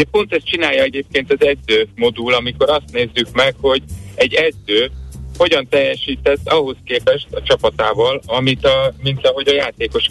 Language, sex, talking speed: Hungarian, male, 160 wpm